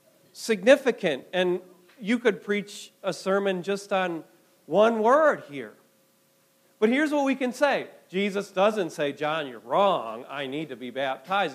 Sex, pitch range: male, 160-240 Hz